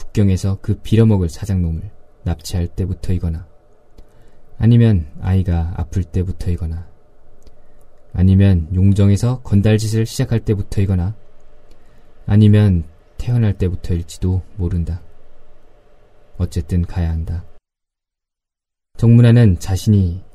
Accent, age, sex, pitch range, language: native, 20-39, male, 90-110 Hz, Korean